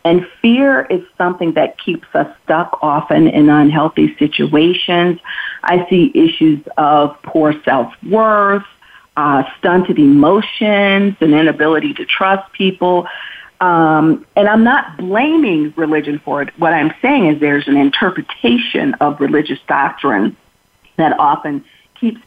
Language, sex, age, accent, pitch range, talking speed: English, female, 40-59, American, 155-225 Hz, 125 wpm